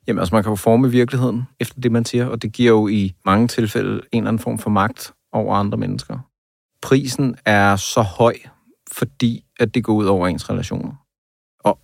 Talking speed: 205 wpm